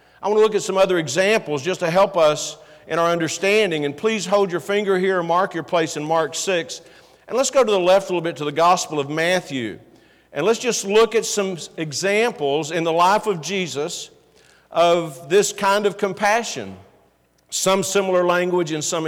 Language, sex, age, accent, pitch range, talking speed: English, male, 50-69, American, 155-200 Hz, 200 wpm